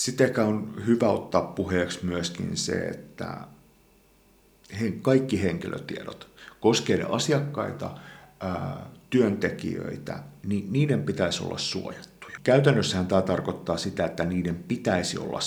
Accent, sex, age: native, male, 50-69